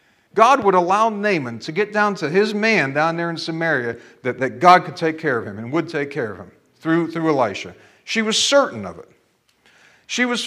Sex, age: male, 40-59